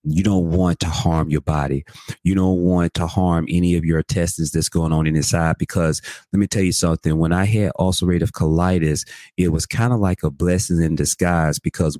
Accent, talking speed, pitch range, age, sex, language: American, 205 wpm, 80-95 Hz, 30-49, male, English